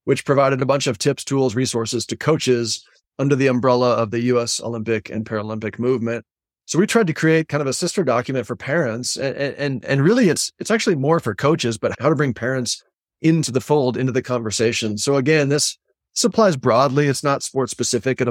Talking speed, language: 205 wpm, English